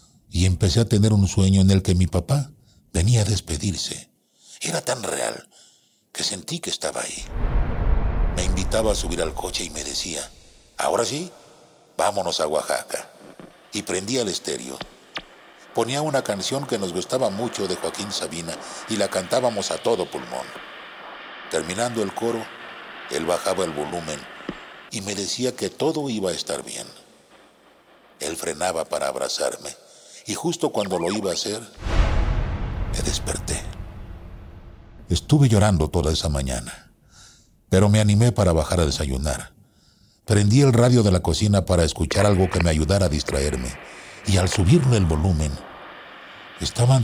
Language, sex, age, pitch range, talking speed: Spanish, male, 60-79, 85-115 Hz, 150 wpm